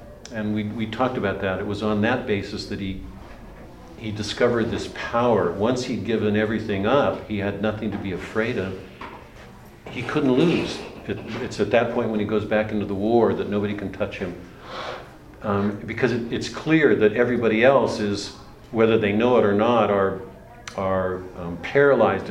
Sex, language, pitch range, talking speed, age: male, English, 100-120 Hz, 185 wpm, 50-69